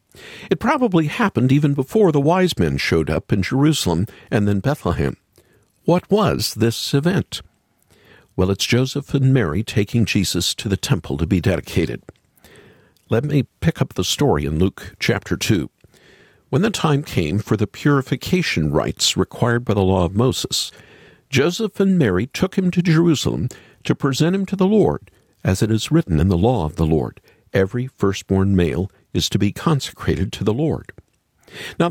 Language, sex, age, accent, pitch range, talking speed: English, male, 50-69, American, 100-165 Hz, 170 wpm